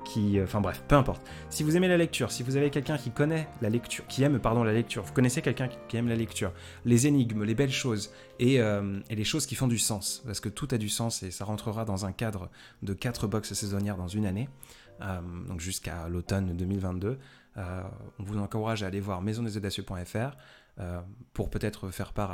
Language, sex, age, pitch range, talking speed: French, male, 20-39, 95-120 Hz, 220 wpm